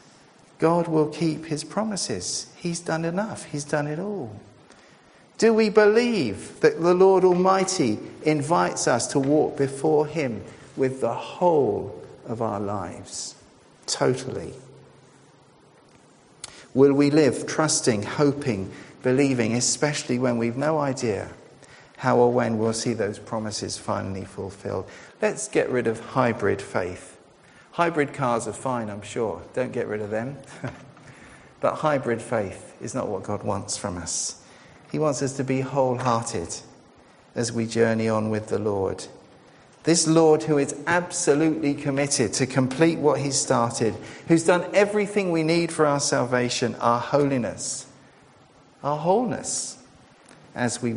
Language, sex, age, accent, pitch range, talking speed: English, male, 50-69, British, 115-160 Hz, 140 wpm